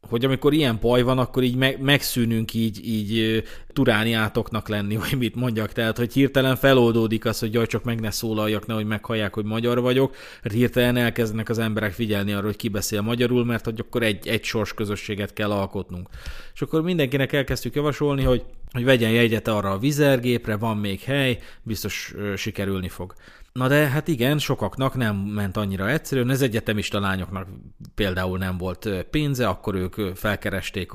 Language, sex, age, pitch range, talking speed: Hungarian, male, 30-49, 105-125 Hz, 165 wpm